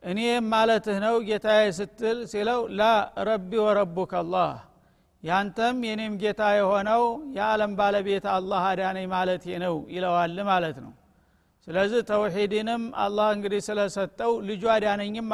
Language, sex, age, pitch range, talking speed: Amharic, male, 50-69, 185-215 Hz, 135 wpm